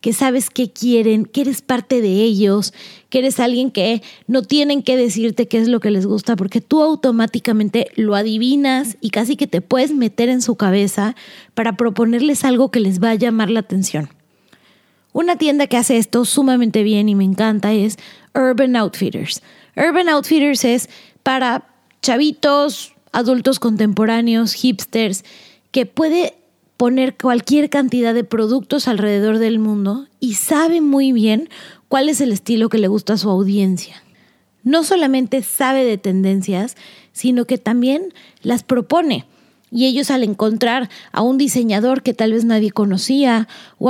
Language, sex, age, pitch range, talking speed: Spanish, female, 20-39, 215-260 Hz, 155 wpm